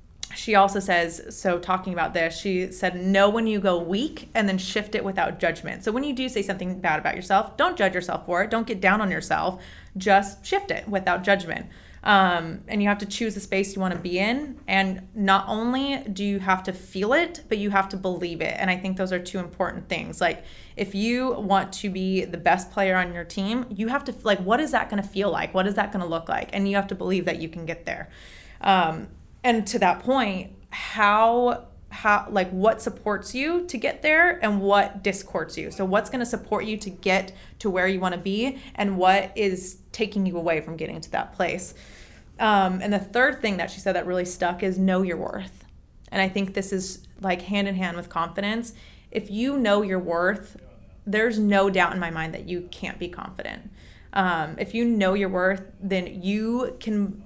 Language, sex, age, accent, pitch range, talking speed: English, female, 20-39, American, 185-215 Hz, 225 wpm